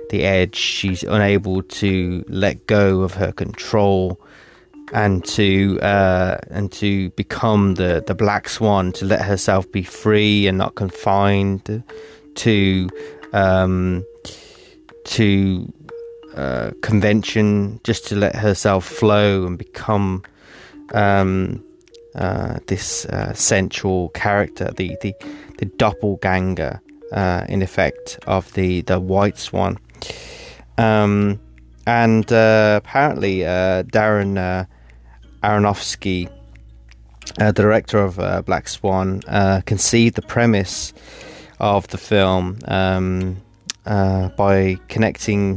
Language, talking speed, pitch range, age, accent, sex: English, 110 wpm, 95-105 Hz, 20-39, British, male